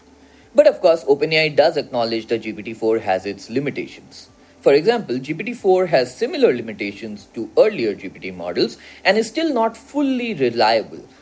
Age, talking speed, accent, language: 30-49, 145 wpm, Indian, English